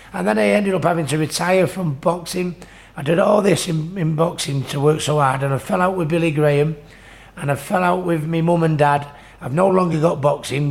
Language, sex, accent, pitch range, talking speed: English, male, British, 140-165 Hz, 235 wpm